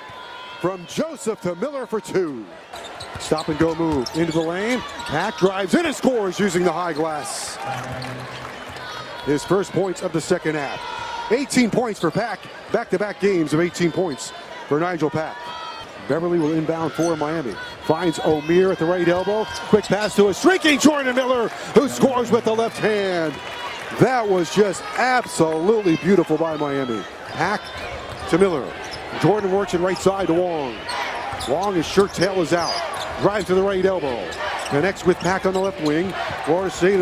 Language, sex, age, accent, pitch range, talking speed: English, male, 50-69, American, 170-230 Hz, 165 wpm